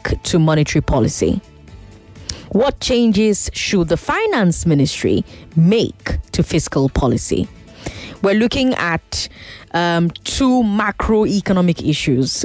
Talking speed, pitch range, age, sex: 95 wpm, 155-215 Hz, 20-39, female